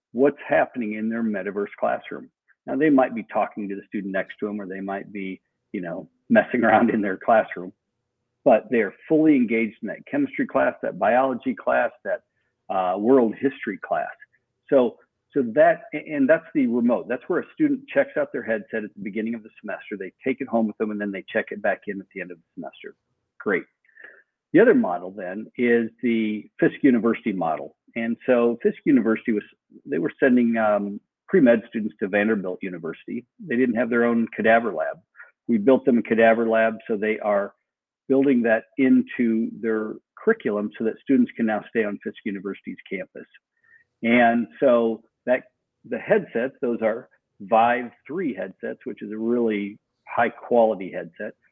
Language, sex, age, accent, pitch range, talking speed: English, male, 50-69, American, 110-130 Hz, 180 wpm